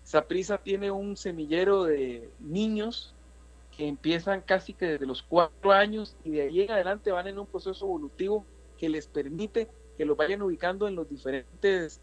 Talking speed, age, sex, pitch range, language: 170 wpm, 50-69, male, 155-210 Hz, Spanish